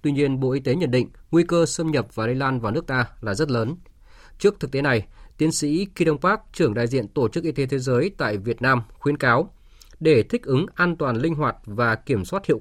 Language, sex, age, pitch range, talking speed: Vietnamese, male, 20-39, 120-160 Hz, 255 wpm